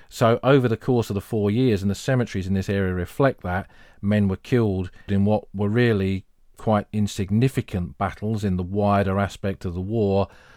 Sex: male